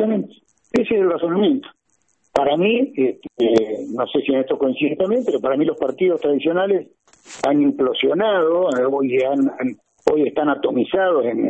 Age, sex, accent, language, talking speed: 50-69, male, Argentinian, Spanish, 145 wpm